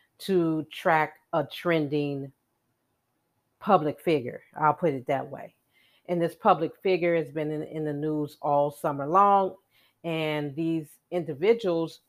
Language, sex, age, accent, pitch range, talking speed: English, female, 40-59, American, 150-190 Hz, 135 wpm